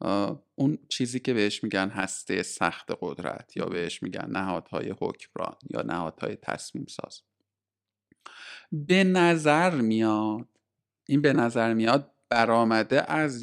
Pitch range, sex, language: 115-155 Hz, male, Persian